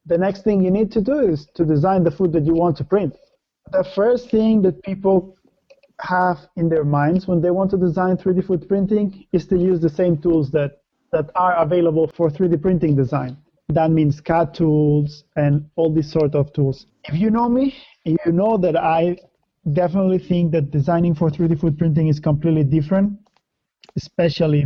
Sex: male